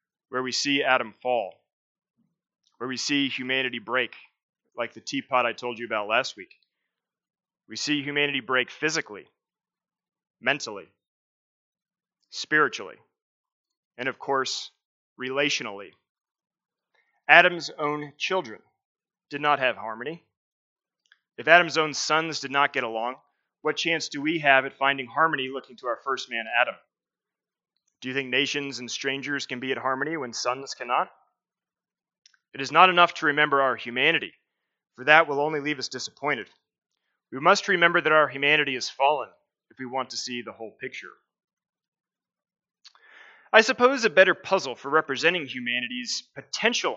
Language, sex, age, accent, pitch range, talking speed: English, male, 30-49, American, 130-175 Hz, 145 wpm